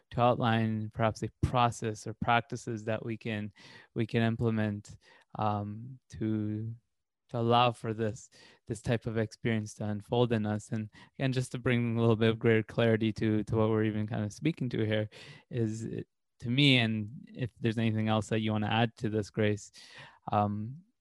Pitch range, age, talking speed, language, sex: 110-125 Hz, 20-39, 190 wpm, English, male